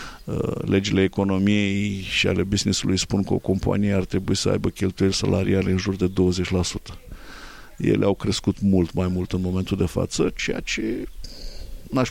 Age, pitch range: 50-69, 95-115 Hz